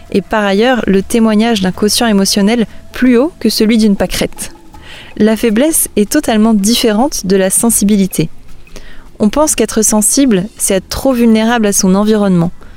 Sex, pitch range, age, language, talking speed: female, 190-225 Hz, 20-39, French, 155 wpm